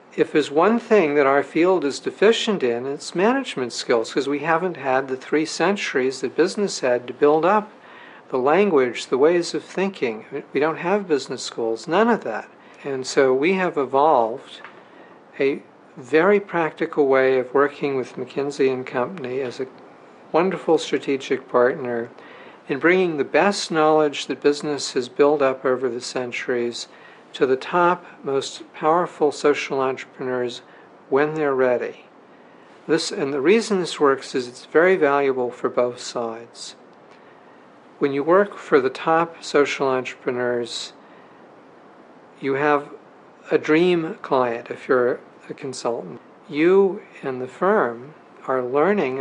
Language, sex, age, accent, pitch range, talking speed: English, male, 60-79, American, 130-175 Hz, 145 wpm